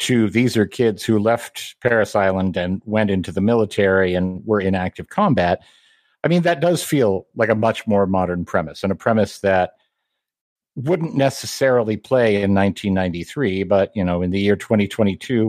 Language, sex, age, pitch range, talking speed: Russian, male, 50-69, 95-120 Hz, 175 wpm